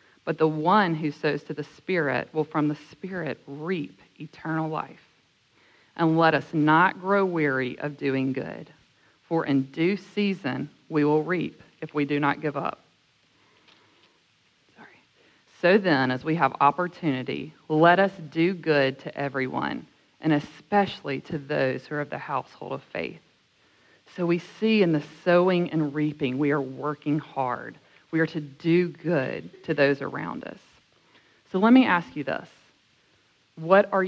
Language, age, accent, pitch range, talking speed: English, 40-59, American, 140-170 Hz, 160 wpm